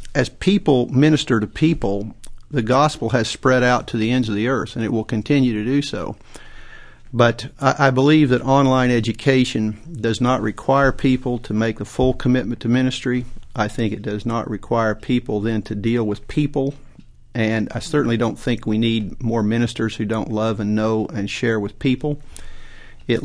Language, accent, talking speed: English, American, 185 wpm